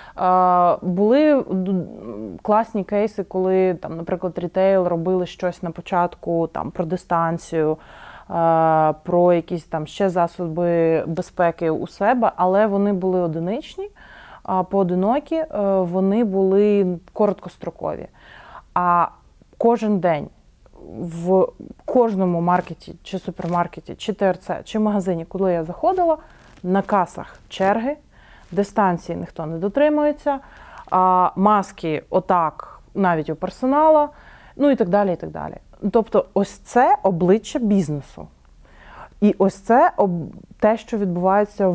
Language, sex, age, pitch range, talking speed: Ukrainian, female, 20-39, 175-205 Hz, 110 wpm